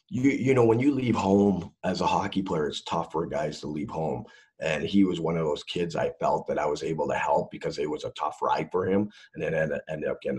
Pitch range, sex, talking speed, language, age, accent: 85-110 Hz, male, 270 wpm, English, 40-59, American